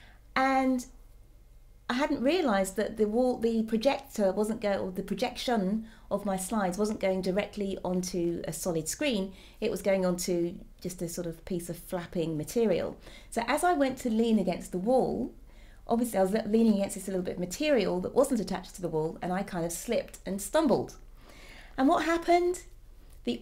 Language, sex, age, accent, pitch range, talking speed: English, female, 30-49, British, 180-255 Hz, 180 wpm